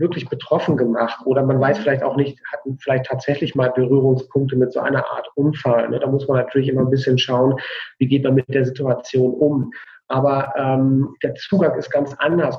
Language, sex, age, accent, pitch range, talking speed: German, male, 40-59, German, 130-170 Hz, 195 wpm